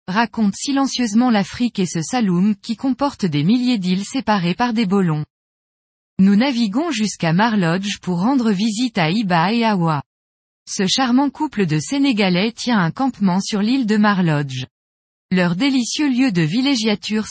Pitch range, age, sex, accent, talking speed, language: 180-245 Hz, 20-39, female, French, 150 wpm, French